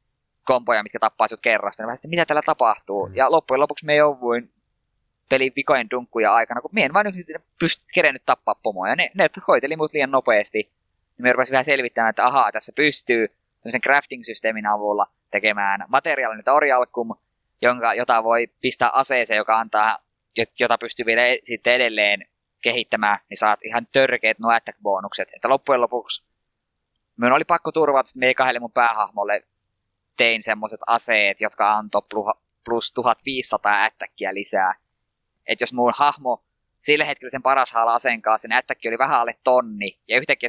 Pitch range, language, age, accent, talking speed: 110-140 Hz, Finnish, 20-39, native, 155 wpm